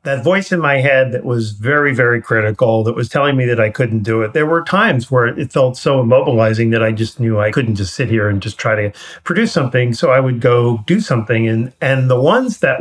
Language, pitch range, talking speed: English, 115-140 Hz, 250 wpm